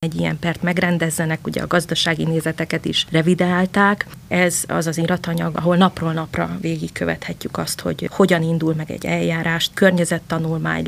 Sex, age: female, 30-49